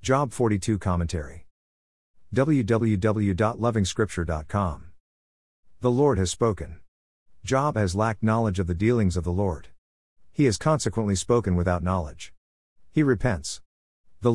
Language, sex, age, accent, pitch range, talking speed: English, male, 50-69, American, 85-115 Hz, 115 wpm